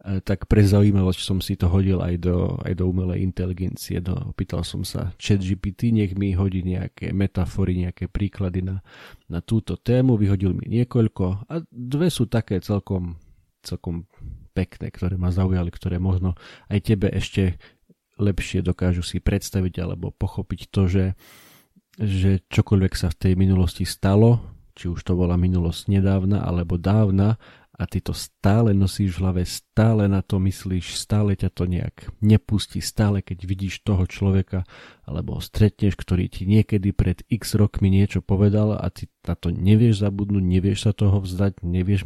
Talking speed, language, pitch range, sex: 160 wpm, Slovak, 90-105 Hz, male